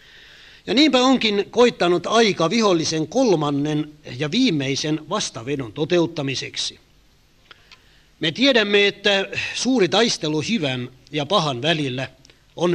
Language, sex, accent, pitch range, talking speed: Finnish, male, native, 135-190 Hz, 100 wpm